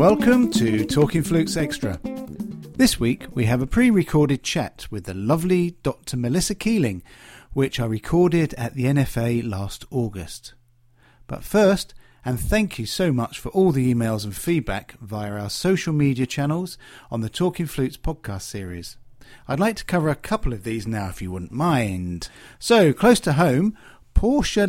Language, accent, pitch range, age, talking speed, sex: English, British, 115-170 Hz, 40-59, 165 wpm, male